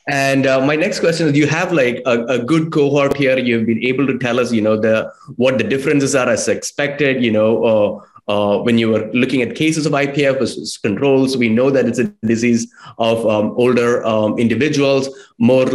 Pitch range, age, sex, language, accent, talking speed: 115-145 Hz, 20-39, male, English, Indian, 210 wpm